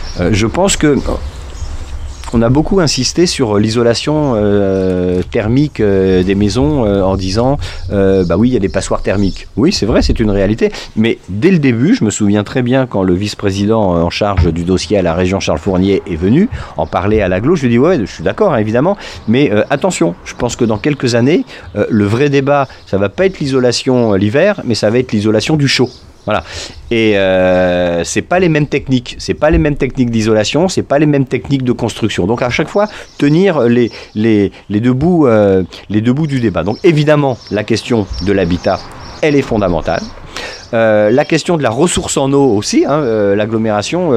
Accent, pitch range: French, 95-130 Hz